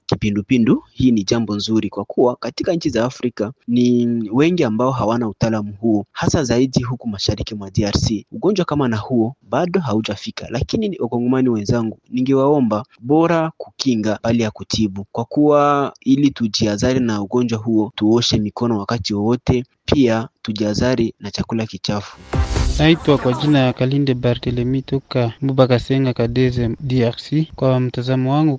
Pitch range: 115-135 Hz